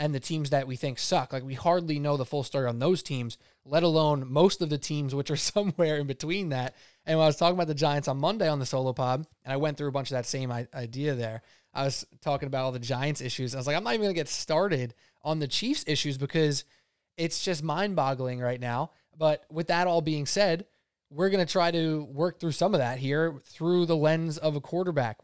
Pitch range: 135-170 Hz